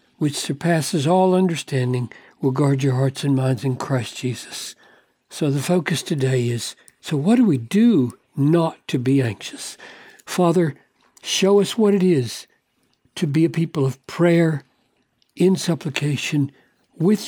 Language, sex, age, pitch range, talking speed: English, male, 60-79, 135-190 Hz, 145 wpm